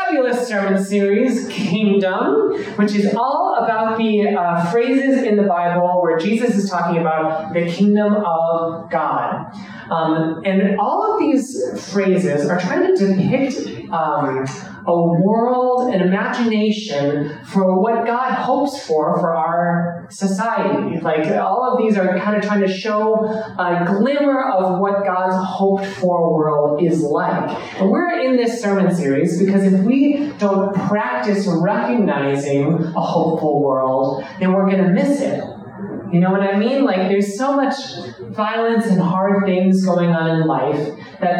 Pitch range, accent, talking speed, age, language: 165-215 Hz, American, 150 wpm, 30-49, English